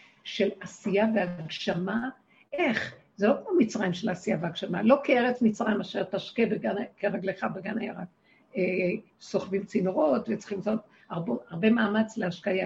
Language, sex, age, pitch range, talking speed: Hebrew, female, 60-79, 210-285 Hz, 130 wpm